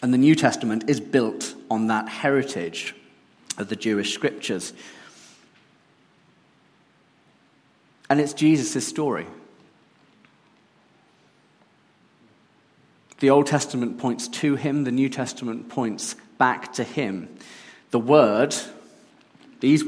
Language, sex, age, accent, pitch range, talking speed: English, male, 40-59, British, 120-150 Hz, 100 wpm